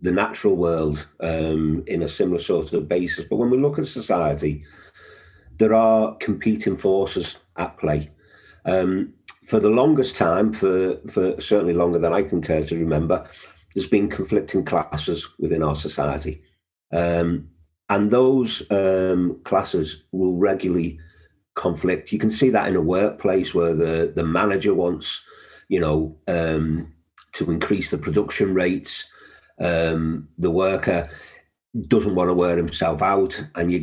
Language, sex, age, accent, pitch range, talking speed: English, male, 40-59, British, 80-100 Hz, 145 wpm